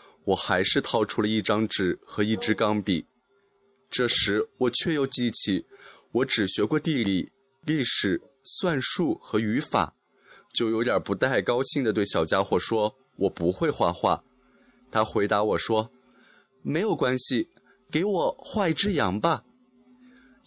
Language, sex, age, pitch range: Chinese, male, 20-39, 115-160 Hz